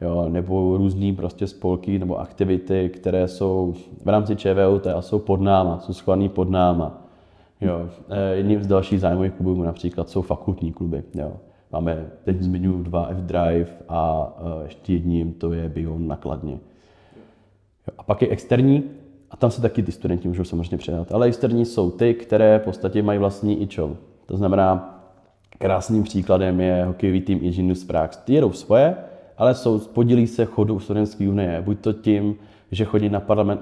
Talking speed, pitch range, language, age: 165 wpm, 90-105 Hz, Czech, 20-39